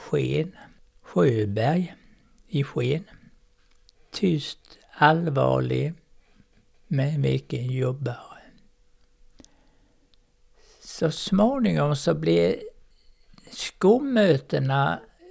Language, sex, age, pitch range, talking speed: Swedish, male, 60-79, 130-170 Hz, 55 wpm